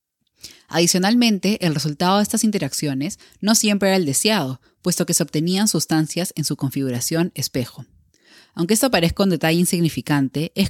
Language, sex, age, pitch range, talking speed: Spanish, female, 10-29, 145-185 Hz, 150 wpm